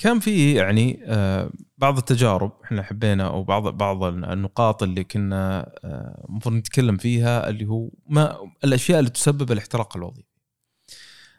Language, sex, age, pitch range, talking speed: Arabic, male, 20-39, 100-135 Hz, 120 wpm